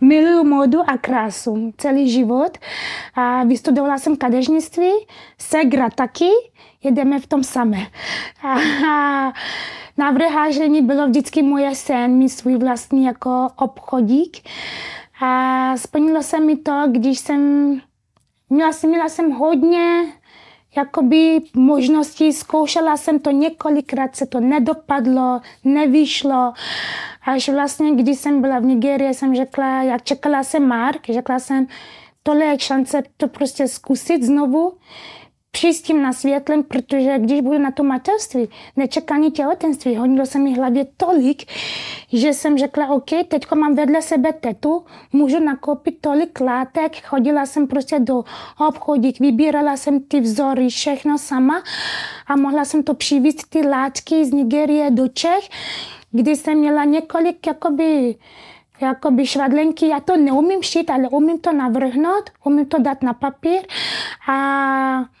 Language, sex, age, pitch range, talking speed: Czech, female, 20-39, 265-310 Hz, 130 wpm